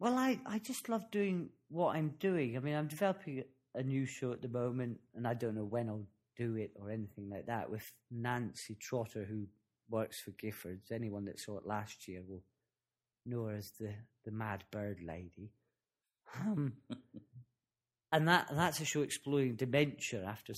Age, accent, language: 40-59, British, English